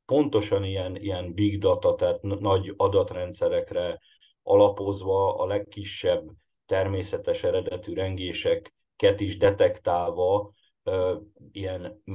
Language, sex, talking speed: Hungarian, male, 85 wpm